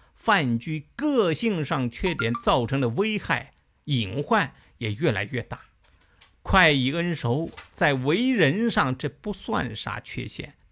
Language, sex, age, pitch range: Chinese, male, 50-69, 120-200 Hz